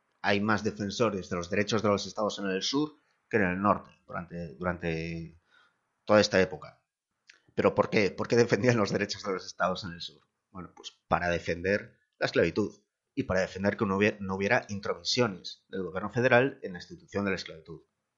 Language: Spanish